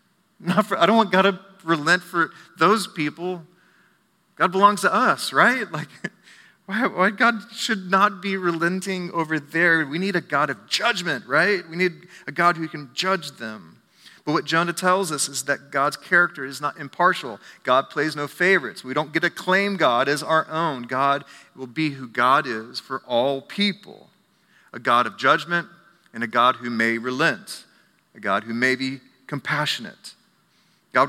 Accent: American